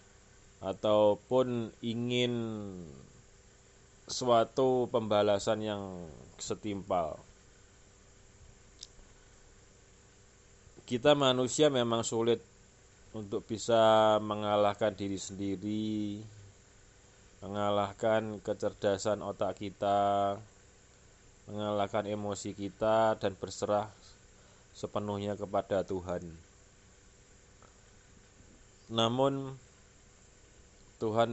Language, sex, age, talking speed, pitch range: Indonesian, male, 20-39, 55 wpm, 100-115 Hz